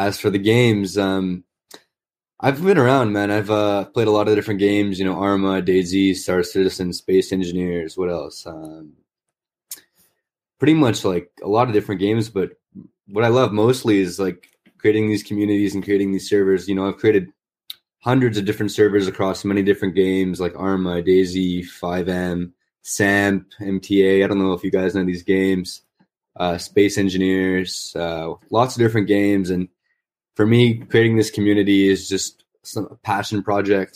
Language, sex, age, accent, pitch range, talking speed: English, male, 20-39, American, 95-105 Hz, 170 wpm